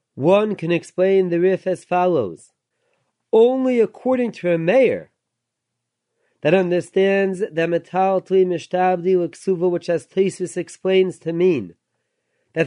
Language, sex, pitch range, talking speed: English, male, 180-210 Hz, 115 wpm